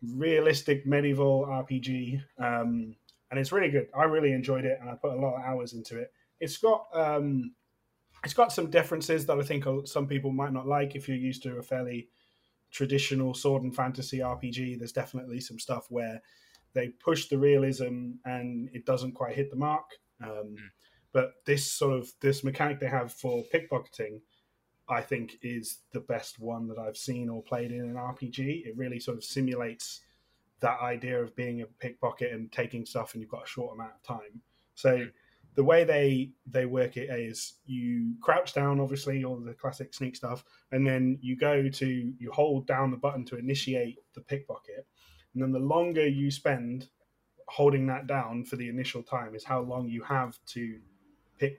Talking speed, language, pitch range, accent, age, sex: 185 wpm, English, 120-140 Hz, British, 30-49, male